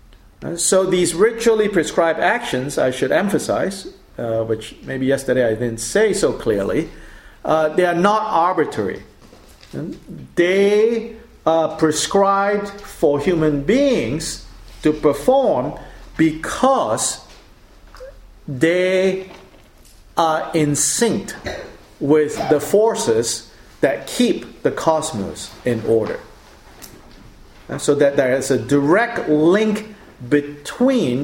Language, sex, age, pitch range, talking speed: English, male, 50-69, 145-210 Hz, 100 wpm